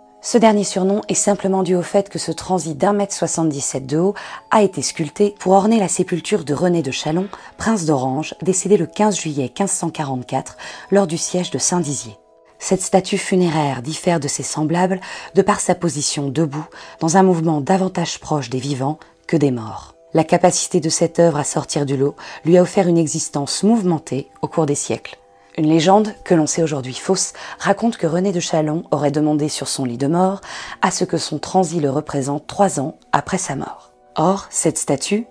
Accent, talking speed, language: French, 195 wpm, French